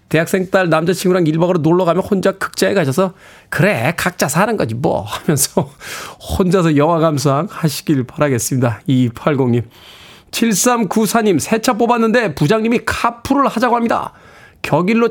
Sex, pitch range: male, 180-235 Hz